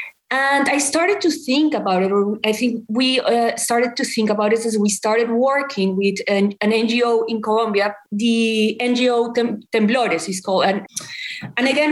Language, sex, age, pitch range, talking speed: English, female, 30-49, 215-275 Hz, 170 wpm